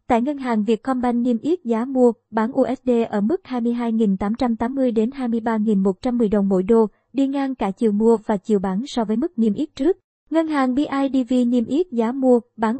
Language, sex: Vietnamese, male